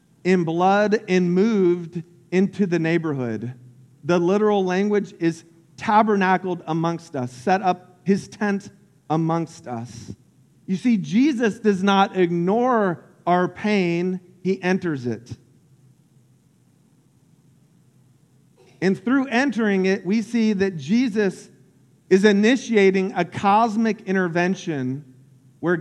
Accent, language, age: American, English, 40-59